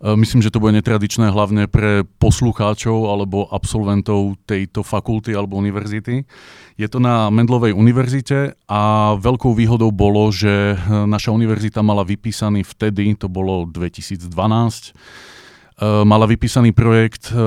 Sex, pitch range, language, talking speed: male, 100-115 Hz, Czech, 120 wpm